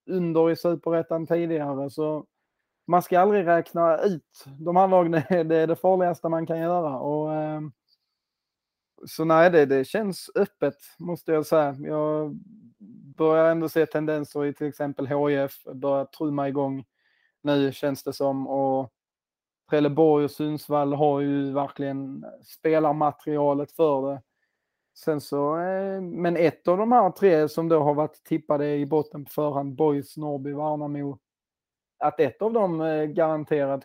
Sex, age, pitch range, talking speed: male, 20-39, 145-170 Hz, 145 wpm